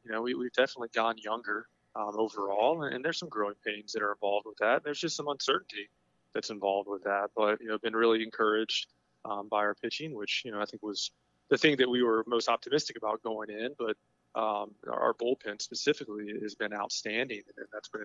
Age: 30-49